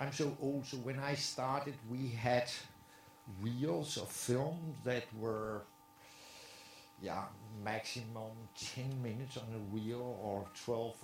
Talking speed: 125 wpm